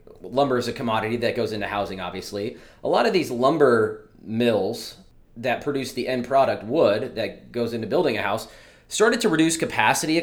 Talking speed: 190 wpm